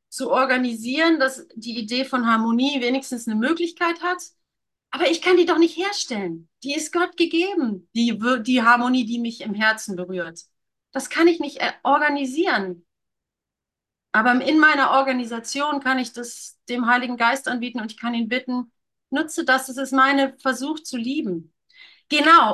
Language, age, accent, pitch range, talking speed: German, 30-49, German, 225-285 Hz, 160 wpm